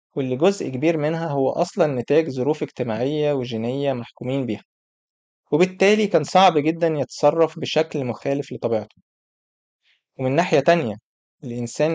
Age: 20-39